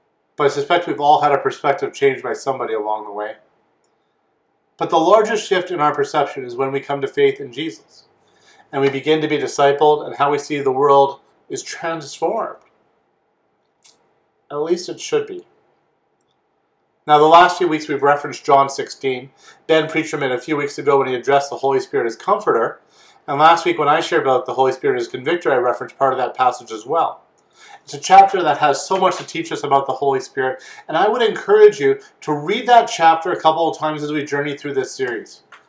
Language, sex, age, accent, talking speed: English, male, 40-59, American, 210 wpm